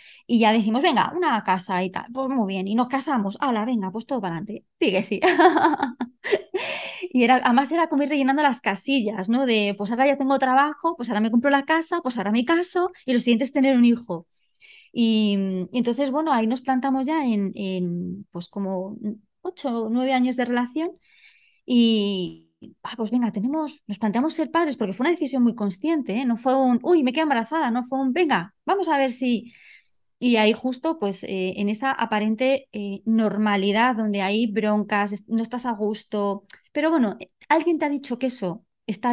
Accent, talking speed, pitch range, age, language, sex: Spanish, 200 wpm, 210-285 Hz, 20-39, Spanish, female